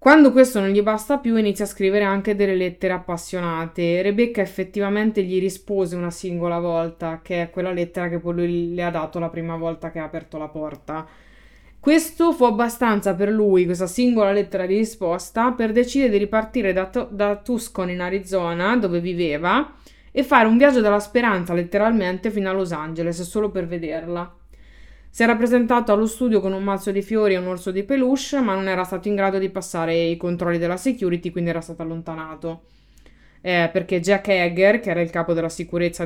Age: 20-39